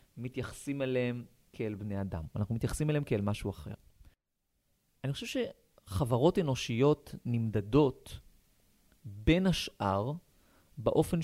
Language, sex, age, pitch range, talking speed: Hebrew, male, 30-49, 110-145 Hz, 100 wpm